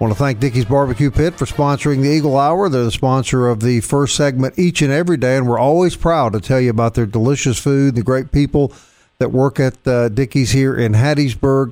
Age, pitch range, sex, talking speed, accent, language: 50-69, 115-145 Hz, male, 225 wpm, American, English